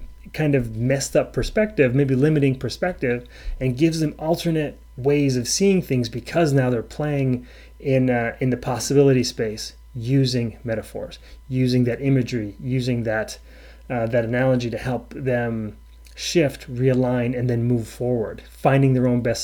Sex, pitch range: male, 120-140 Hz